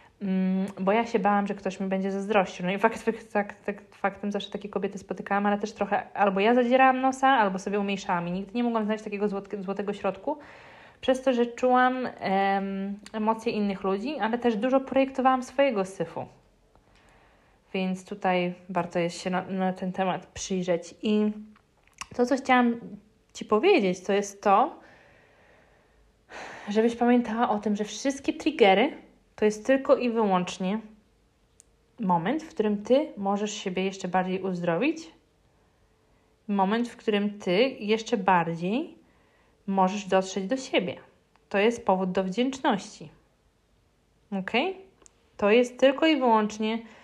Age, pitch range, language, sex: 20-39, 190-240 Hz, Polish, female